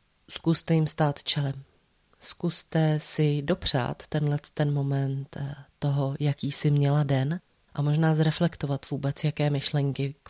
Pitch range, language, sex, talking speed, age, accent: 145-165 Hz, Czech, female, 130 wpm, 30-49, native